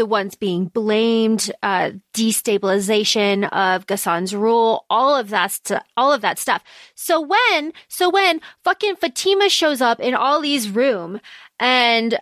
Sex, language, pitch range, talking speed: female, English, 220-285 Hz, 130 wpm